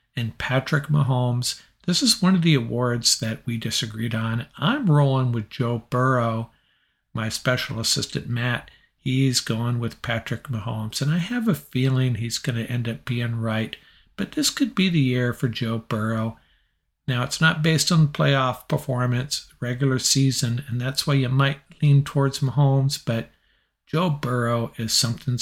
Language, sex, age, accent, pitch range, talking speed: English, male, 50-69, American, 115-140 Hz, 165 wpm